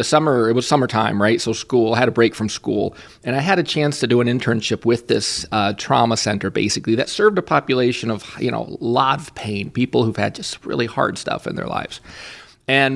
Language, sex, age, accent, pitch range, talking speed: English, male, 30-49, American, 115-145 Hz, 235 wpm